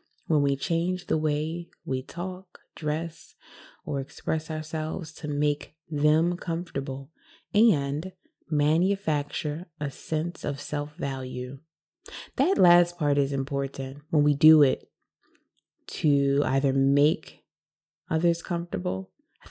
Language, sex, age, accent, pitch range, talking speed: English, female, 20-39, American, 140-180 Hz, 110 wpm